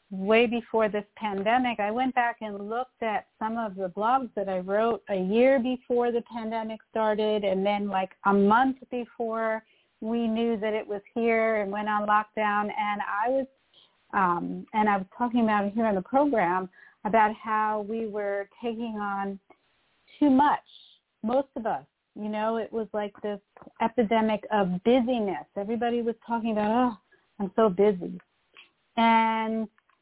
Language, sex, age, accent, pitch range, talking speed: English, female, 40-59, American, 205-235 Hz, 165 wpm